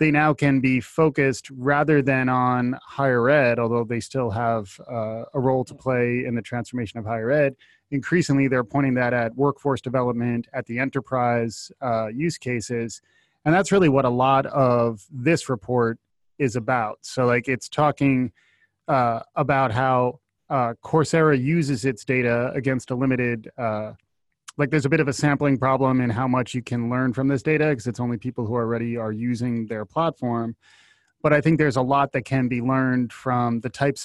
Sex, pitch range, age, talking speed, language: male, 120-140 Hz, 20-39, 185 wpm, English